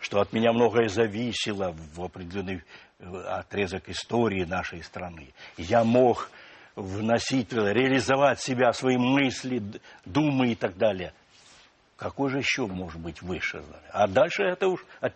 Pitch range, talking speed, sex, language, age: 95-120 Hz, 135 wpm, male, Russian, 60-79